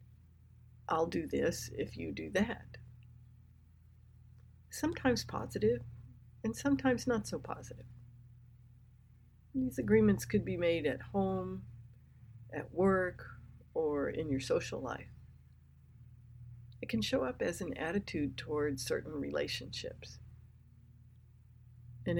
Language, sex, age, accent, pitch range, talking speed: English, female, 60-79, American, 115-160 Hz, 105 wpm